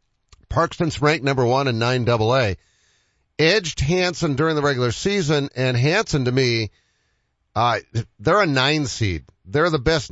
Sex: male